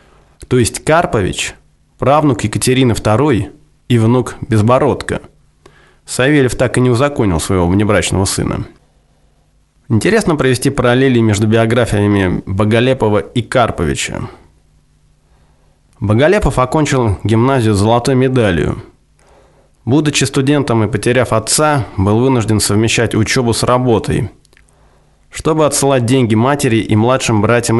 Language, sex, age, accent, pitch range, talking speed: Russian, male, 20-39, native, 105-130 Hz, 105 wpm